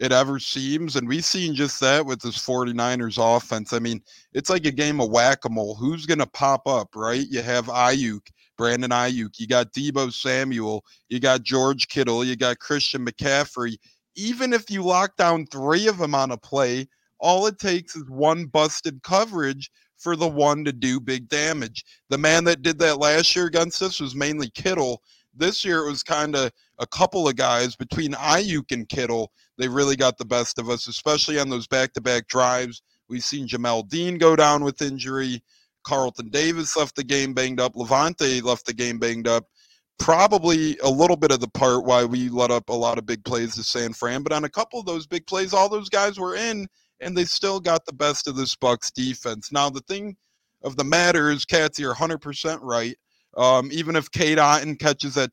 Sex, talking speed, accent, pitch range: male, 205 wpm, American, 125-160 Hz